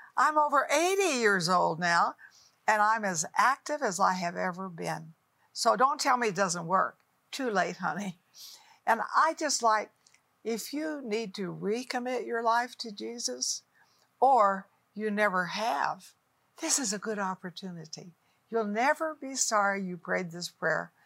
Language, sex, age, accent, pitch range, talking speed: English, female, 60-79, American, 185-245 Hz, 155 wpm